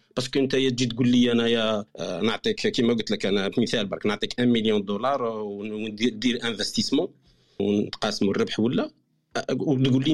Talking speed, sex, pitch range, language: 140 wpm, male, 115-155 Hz, Arabic